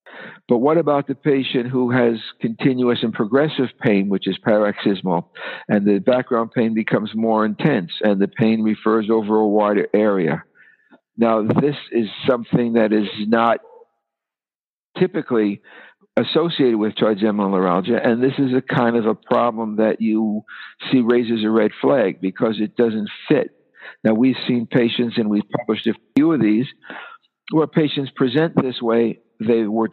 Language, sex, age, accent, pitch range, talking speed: English, male, 60-79, American, 105-125 Hz, 155 wpm